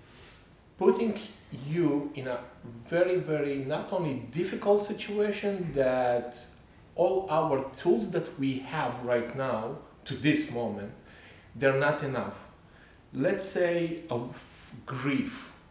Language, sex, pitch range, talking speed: English, male, 120-155 Hz, 110 wpm